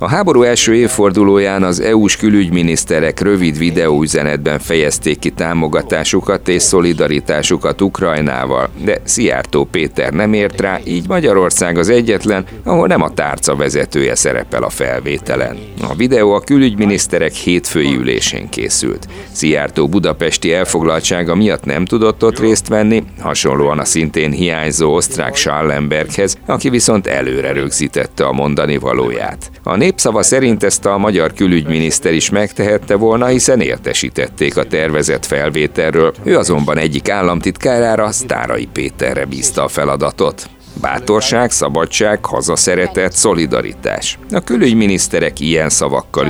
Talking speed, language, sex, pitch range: 120 wpm, Hungarian, male, 80-105 Hz